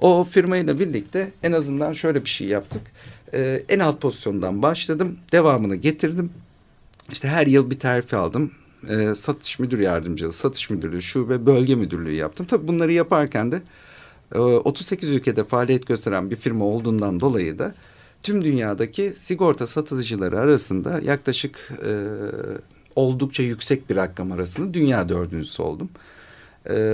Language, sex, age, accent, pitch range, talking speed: Turkish, male, 50-69, native, 110-155 Hz, 140 wpm